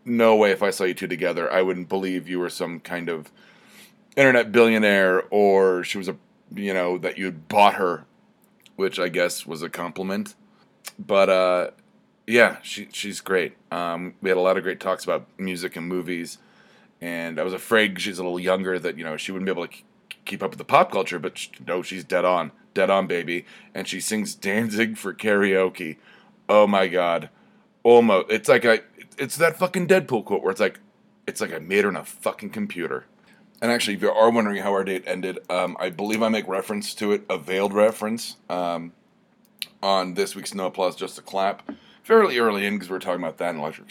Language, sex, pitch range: English, male, 90-115 Hz